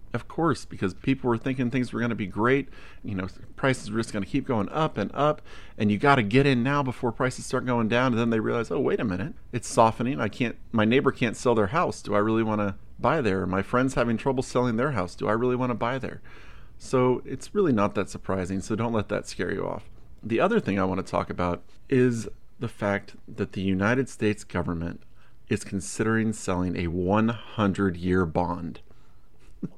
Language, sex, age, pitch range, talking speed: English, male, 30-49, 95-125 Hz, 225 wpm